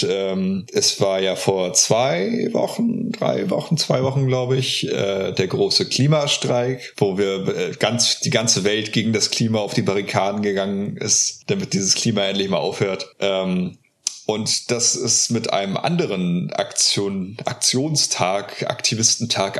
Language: German